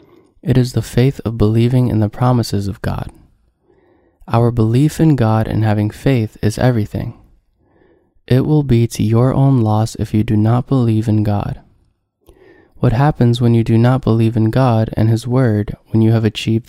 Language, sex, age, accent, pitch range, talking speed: English, male, 20-39, American, 110-125 Hz, 180 wpm